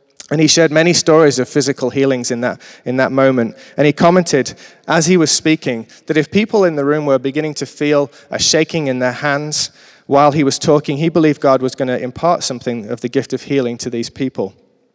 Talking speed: 220 wpm